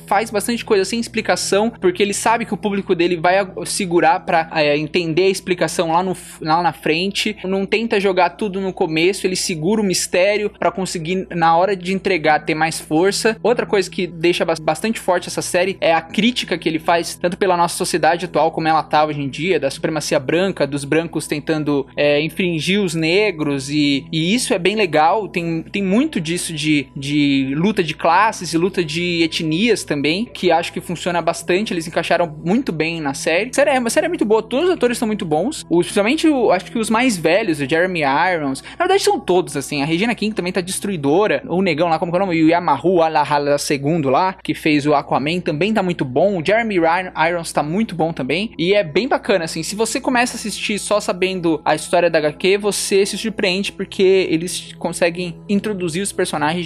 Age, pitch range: 20-39, 160-200 Hz